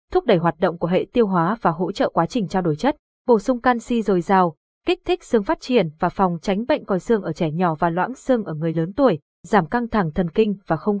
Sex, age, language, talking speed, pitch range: female, 20-39, Vietnamese, 265 wpm, 180-235 Hz